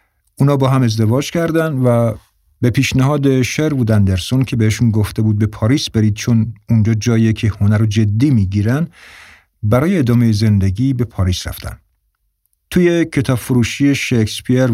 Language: Persian